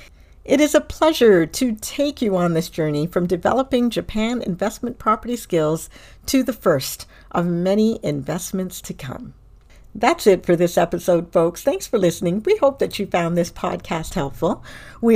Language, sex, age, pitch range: English, female, 60-79, 160-230 Hz